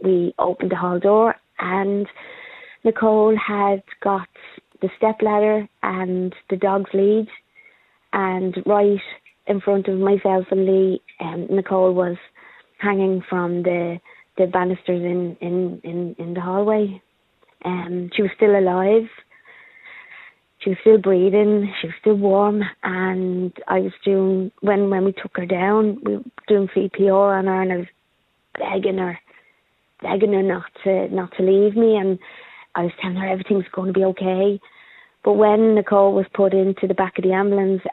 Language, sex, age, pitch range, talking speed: English, female, 30-49, 180-200 Hz, 160 wpm